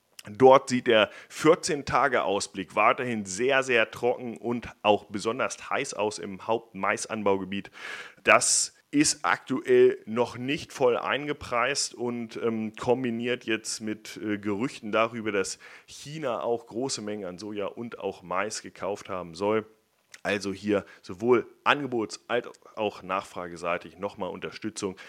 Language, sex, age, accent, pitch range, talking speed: German, male, 30-49, German, 105-130 Hz, 125 wpm